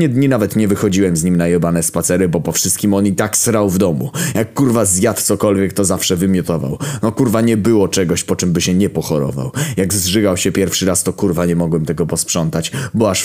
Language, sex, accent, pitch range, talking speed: Polish, male, native, 85-105 Hz, 220 wpm